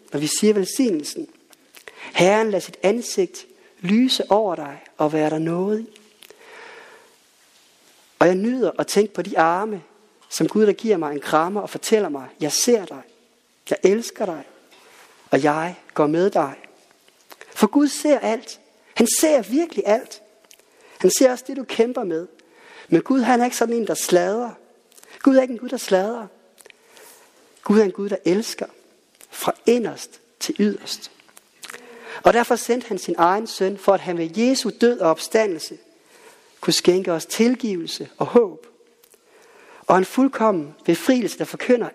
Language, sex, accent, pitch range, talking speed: Danish, male, native, 190-305 Hz, 160 wpm